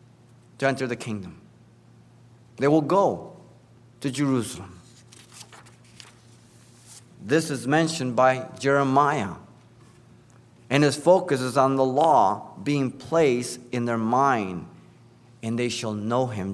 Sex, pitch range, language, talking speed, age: male, 115-140 Hz, English, 115 wpm, 50-69